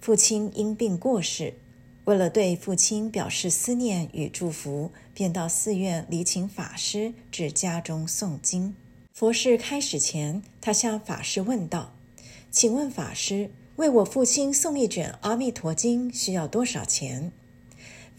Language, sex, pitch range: Chinese, female, 145-220 Hz